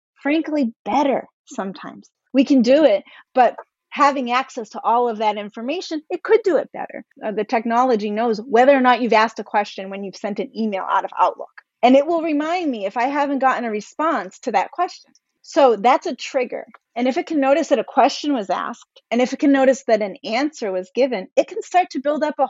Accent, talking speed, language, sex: American, 225 wpm, English, female